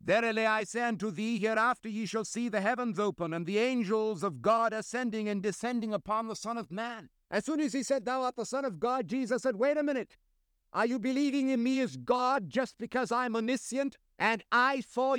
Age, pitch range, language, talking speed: 60-79, 195-250 Hz, English, 220 wpm